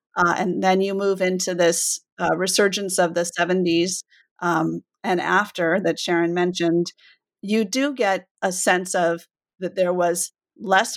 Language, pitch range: English, 175-200 Hz